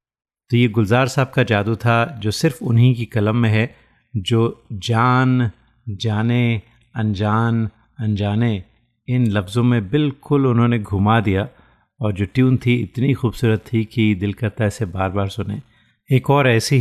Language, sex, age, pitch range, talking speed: Hindi, male, 30-49, 105-120 Hz, 155 wpm